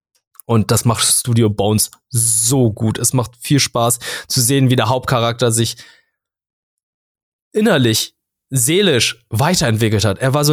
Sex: male